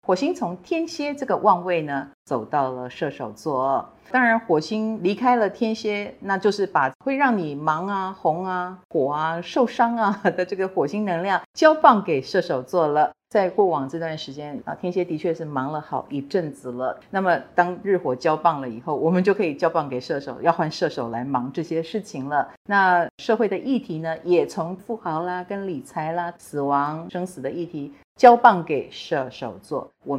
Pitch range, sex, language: 150-195 Hz, female, Chinese